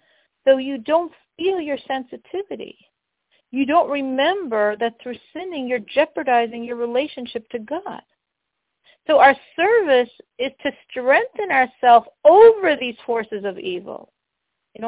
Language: English